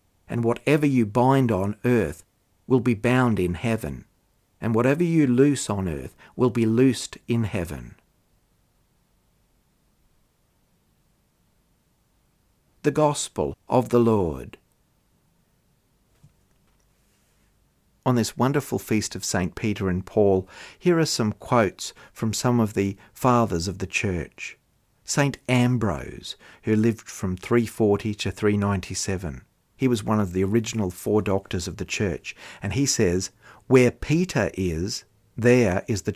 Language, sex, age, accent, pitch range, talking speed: English, male, 50-69, Australian, 95-125 Hz, 125 wpm